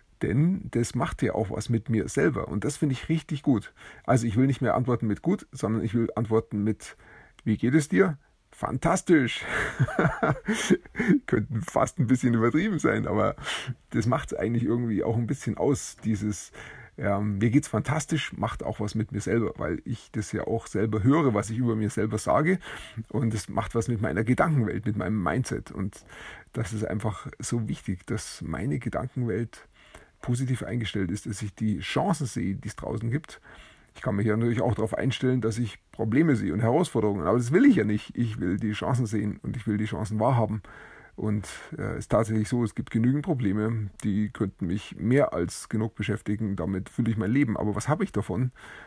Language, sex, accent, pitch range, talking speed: German, male, German, 105-130 Hz, 200 wpm